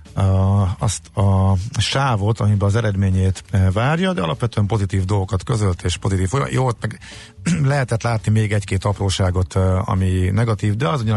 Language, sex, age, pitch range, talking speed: Hungarian, male, 50-69, 95-110 Hz, 150 wpm